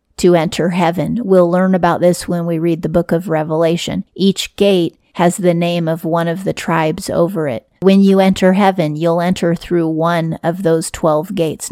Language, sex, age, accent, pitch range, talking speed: English, female, 30-49, American, 165-185 Hz, 195 wpm